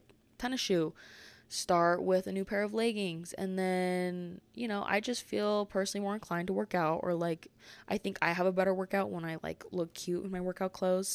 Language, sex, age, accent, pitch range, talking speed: English, female, 20-39, American, 170-210 Hz, 215 wpm